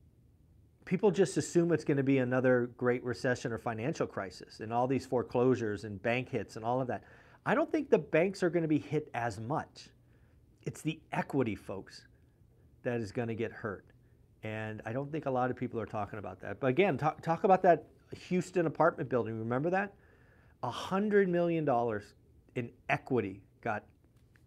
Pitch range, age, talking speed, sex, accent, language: 115-150 Hz, 40-59, 180 wpm, male, American, English